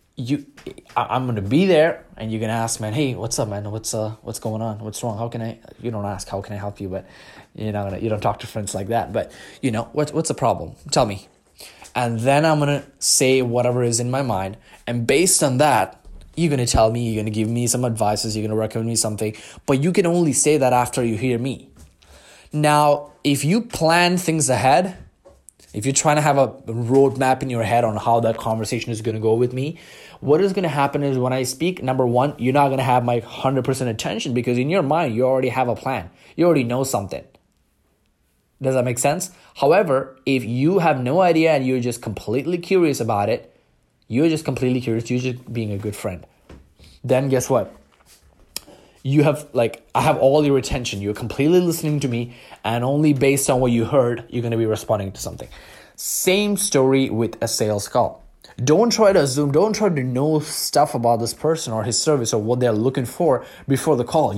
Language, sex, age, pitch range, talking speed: English, male, 20-39, 115-145 Hz, 220 wpm